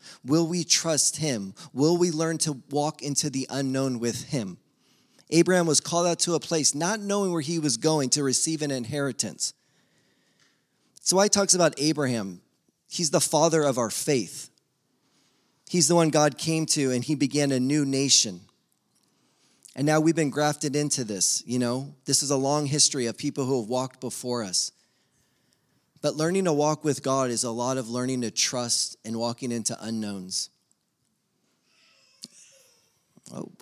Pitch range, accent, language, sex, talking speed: 115-155 Hz, American, English, male, 165 wpm